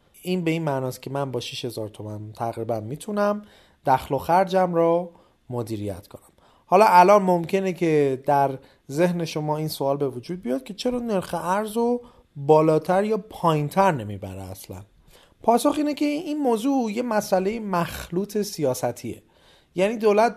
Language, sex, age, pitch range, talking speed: Persian, male, 30-49, 140-205 Hz, 145 wpm